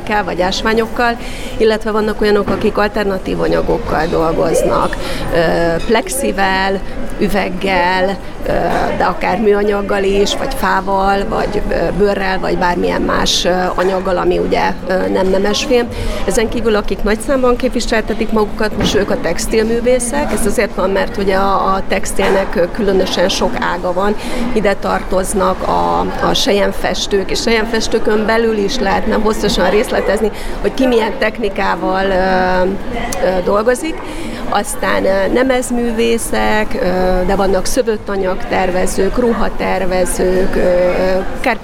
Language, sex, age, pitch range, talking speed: Hungarian, female, 30-49, 190-230 Hz, 110 wpm